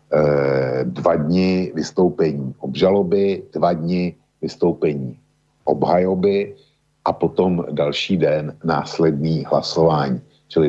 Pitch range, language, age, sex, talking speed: 70-85 Hz, Slovak, 50-69, male, 85 wpm